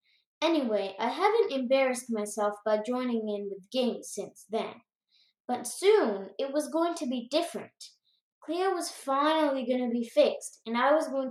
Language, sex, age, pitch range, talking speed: English, female, 20-39, 225-310 Hz, 165 wpm